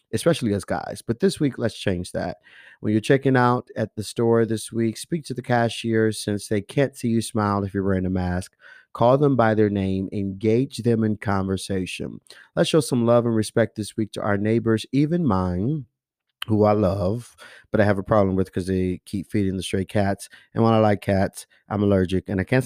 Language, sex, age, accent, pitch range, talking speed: English, male, 30-49, American, 100-120 Hz, 215 wpm